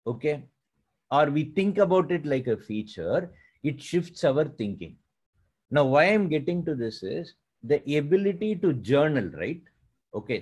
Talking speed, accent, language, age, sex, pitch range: 150 wpm, Indian, English, 50-69, male, 140-195 Hz